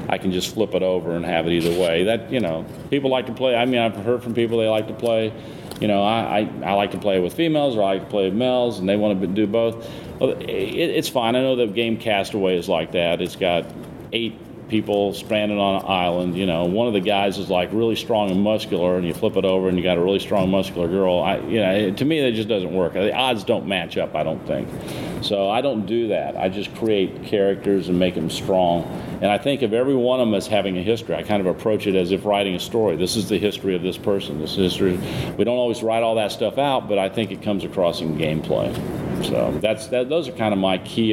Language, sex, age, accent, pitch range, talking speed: English, male, 40-59, American, 95-115 Hz, 265 wpm